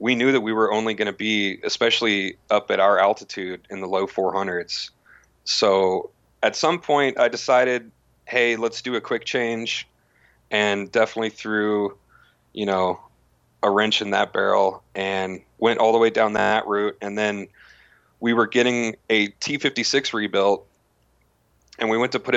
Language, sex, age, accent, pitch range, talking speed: English, male, 30-49, American, 95-115 Hz, 165 wpm